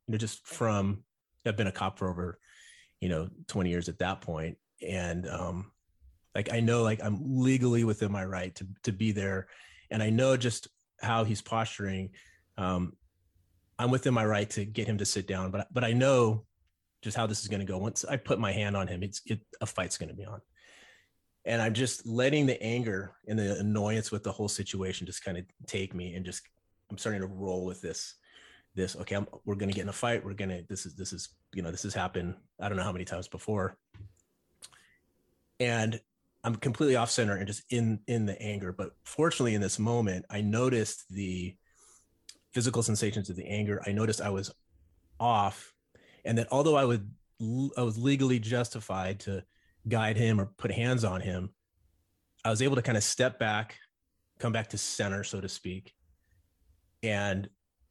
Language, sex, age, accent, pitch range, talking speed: English, male, 30-49, American, 95-115 Hz, 200 wpm